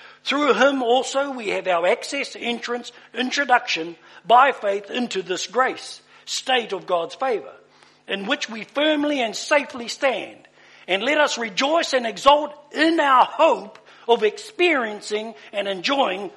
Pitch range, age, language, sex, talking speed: 215-290 Hz, 60-79, English, male, 140 wpm